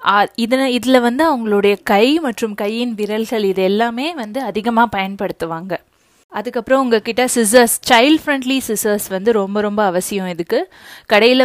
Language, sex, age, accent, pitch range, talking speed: Tamil, female, 20-39, native, 200-250 Hz, 130 wpm